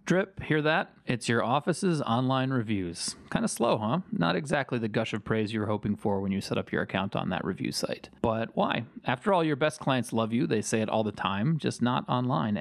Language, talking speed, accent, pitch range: English, 235 wpm, American, 110-155 Hz